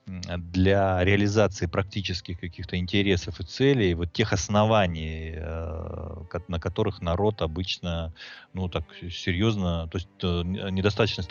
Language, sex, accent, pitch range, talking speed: Russian, male, native, 85-100 Hz, 105 wpm